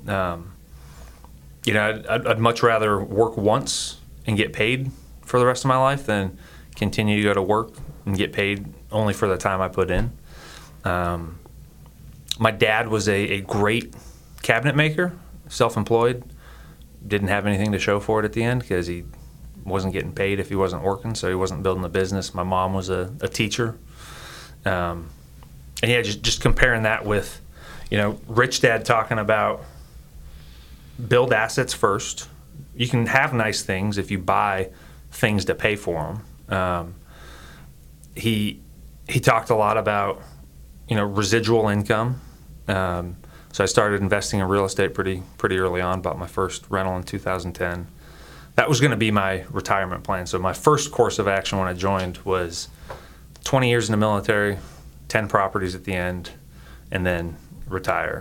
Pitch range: 90-110 Hz